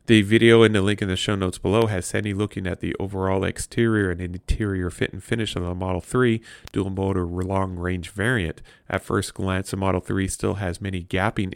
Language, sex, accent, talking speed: English, male, American, 215 wpm